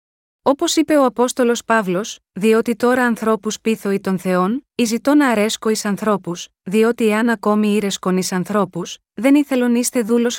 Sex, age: female, 20-39